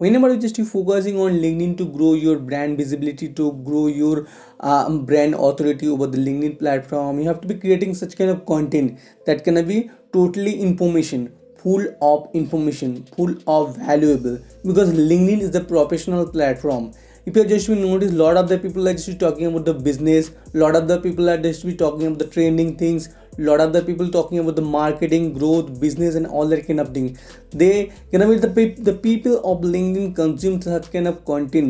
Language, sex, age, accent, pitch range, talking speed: English, male, 20-39, Indian, 150-185 Hz, 200 wpm